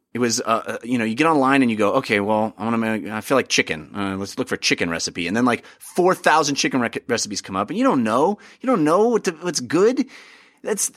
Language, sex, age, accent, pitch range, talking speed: English, male, 30-49, American, 115-160 Hz, 265 wpm